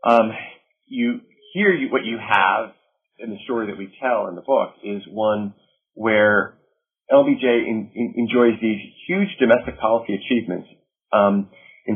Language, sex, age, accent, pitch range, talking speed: English, male, 40-59, American, 105-175 Hz, 135 wpm